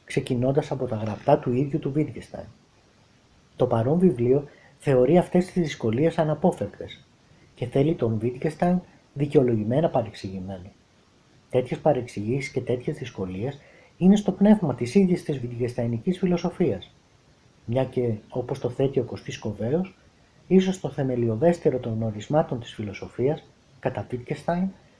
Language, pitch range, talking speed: Greek, 115-165 Hz, 125 wpm